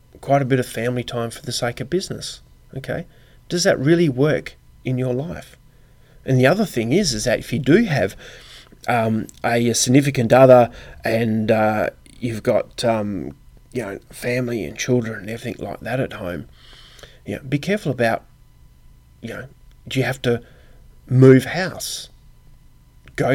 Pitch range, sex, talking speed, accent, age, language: 120-140 Hz, male, 165 wpm, Australian, 30-49, English